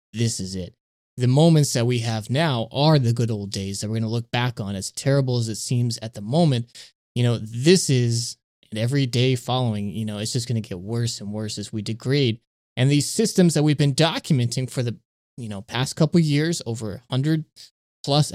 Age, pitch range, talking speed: 20-39, 110-140 Hz, 225 wpm